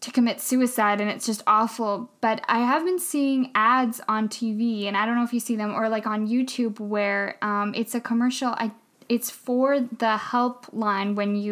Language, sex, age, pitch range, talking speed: English, female, 10-29, 215-245 Hz, 205 wpm